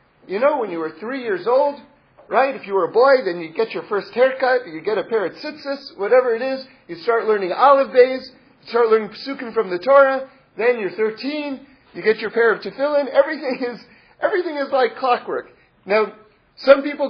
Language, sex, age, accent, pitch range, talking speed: English, male, 40-59, American, 220-285 Hz, 205 wpm